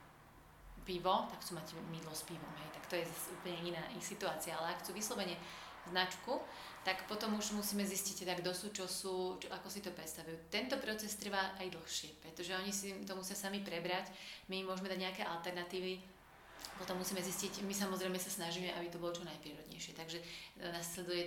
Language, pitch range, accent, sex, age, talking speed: Czech, 170-190 Hz, native, female, 30-49, 185 wpm